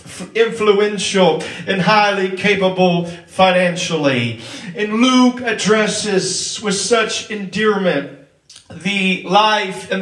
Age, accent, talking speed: 40-59, American, 85 wpm